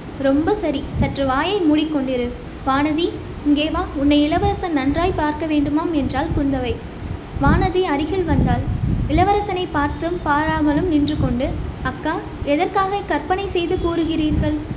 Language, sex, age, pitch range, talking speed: Tamil, female, 20-39, 290-355 Hz, 110 wpm